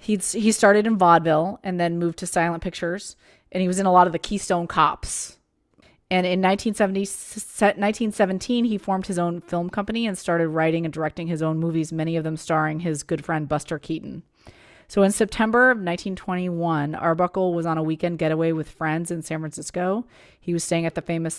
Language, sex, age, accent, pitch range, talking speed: English, female, 30-49, American, 160-185 Hz, 190 wpm